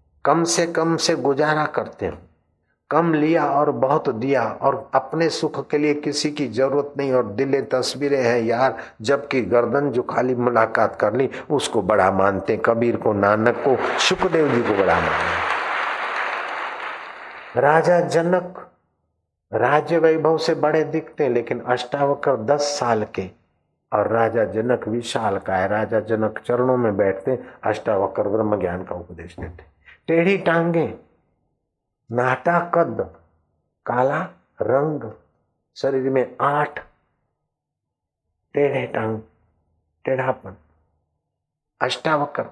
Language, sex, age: Hindi, male, 50-69